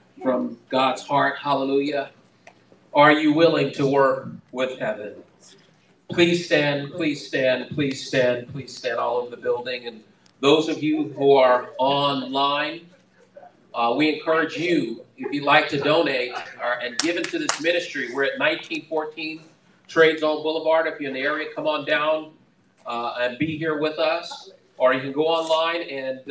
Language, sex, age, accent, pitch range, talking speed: English, male, 40-59, American, 130-165 Hz, 160 wpm